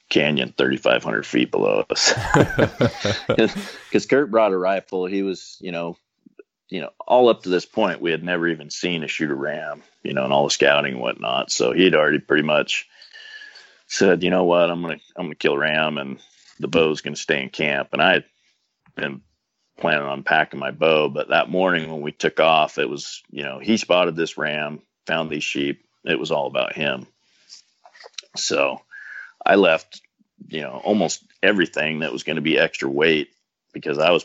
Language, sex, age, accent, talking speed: English, male, 40-59, American, 190 wpm